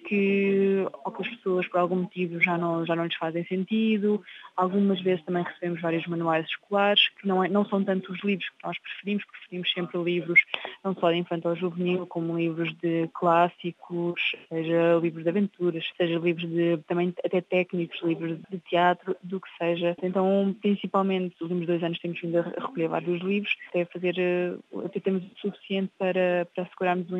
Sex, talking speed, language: female, 185 wpm, Portuguese